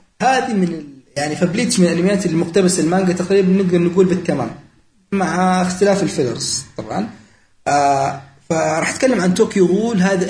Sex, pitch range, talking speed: male, 145-190 Hz, 145 wpm